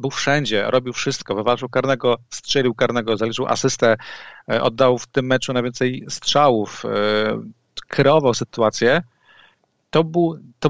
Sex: male